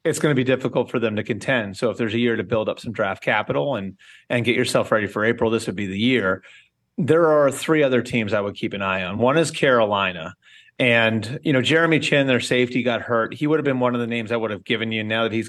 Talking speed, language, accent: 275 wpm, English, American